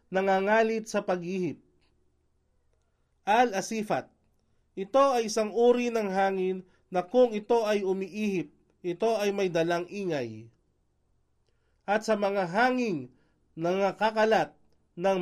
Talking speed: 105 wpm